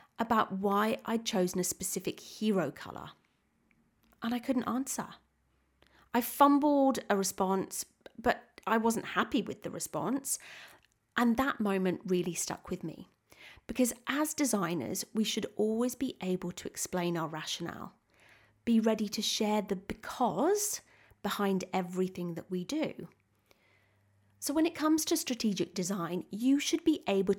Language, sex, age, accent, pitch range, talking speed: English, female, 30-49, British, 180-240 Hz, 140 wpm